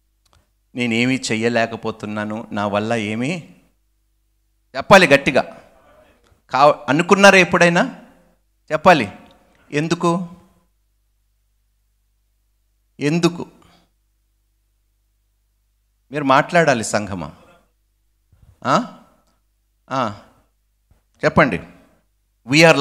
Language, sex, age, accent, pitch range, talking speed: Telugu, male, 50-69, native, 105-130 Hz, 45 wpm